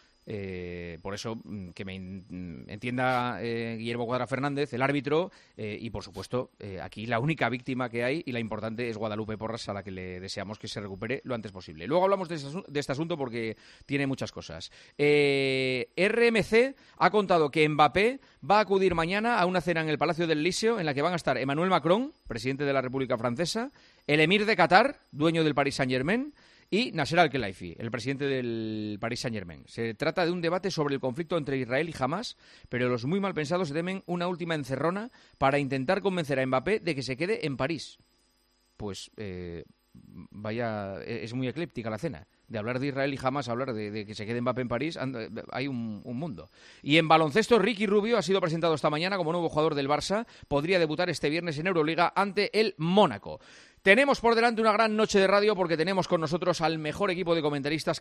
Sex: male